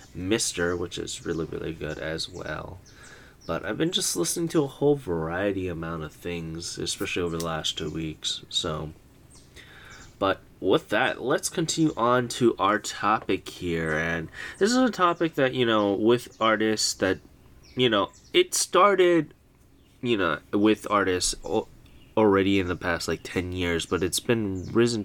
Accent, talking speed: American, 160 wpm